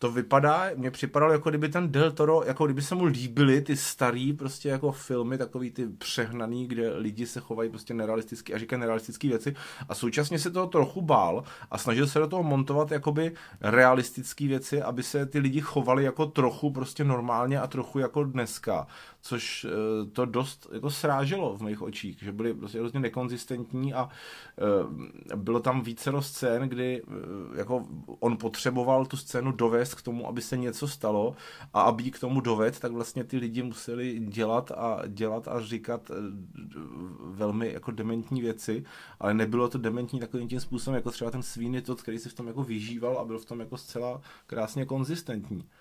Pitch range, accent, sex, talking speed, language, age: 115-135 Hz, native, male, 175 wpm, Czech, 30-49